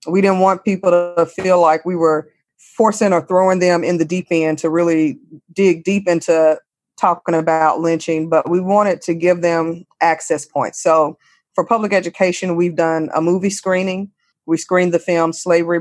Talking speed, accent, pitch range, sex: 180 wpm, American, 165-185 Hz, female